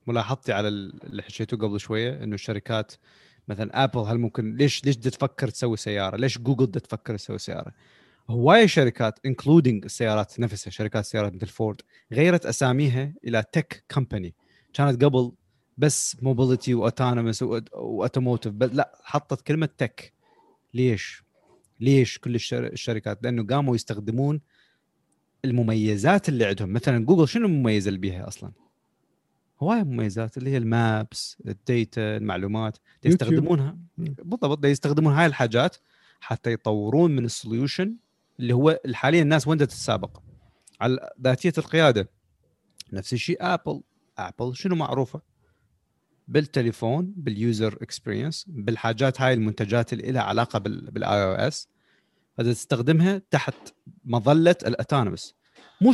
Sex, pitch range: male, 110-145 Hz